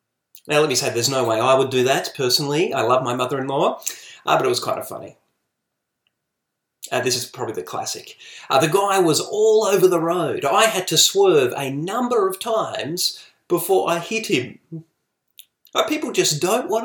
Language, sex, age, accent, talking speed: English, male, 30-49, Australian, 190 wpm